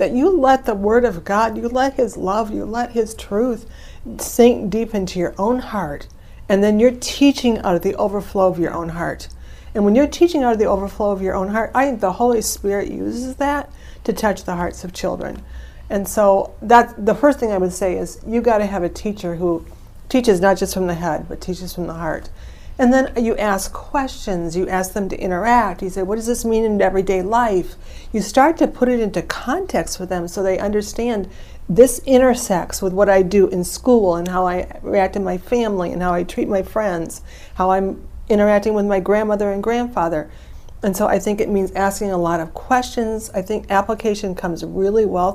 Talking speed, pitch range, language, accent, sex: 215 wpm, 185-235 Hz, English, American, female